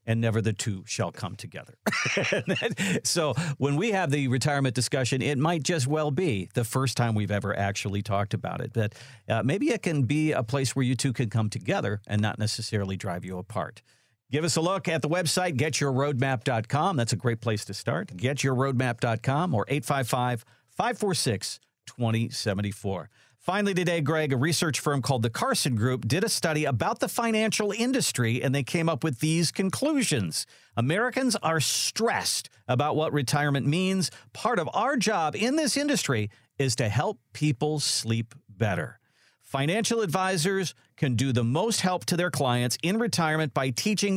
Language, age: English, 50-69